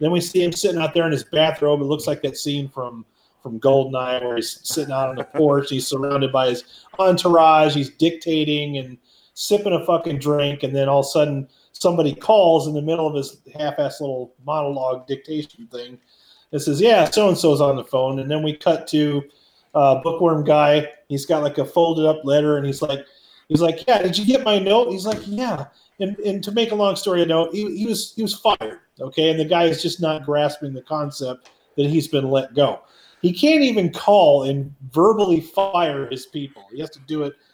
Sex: male